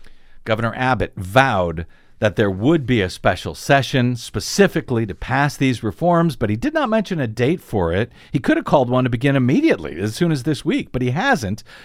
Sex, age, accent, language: male, 50-69, American, English